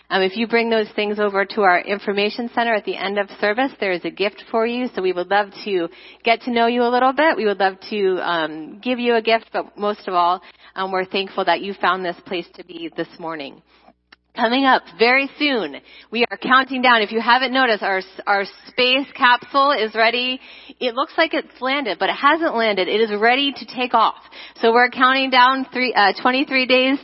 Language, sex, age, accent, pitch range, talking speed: English, female, 30-49, American, 205-255 Hz, 220 wpm